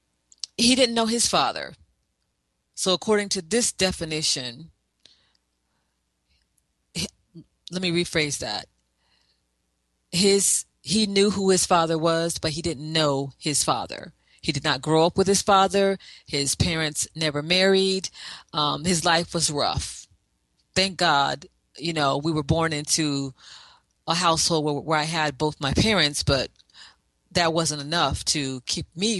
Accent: American